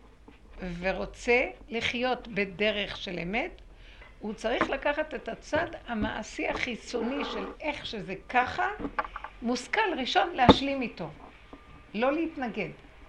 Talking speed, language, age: 100 wpm, Hebrew, 60-79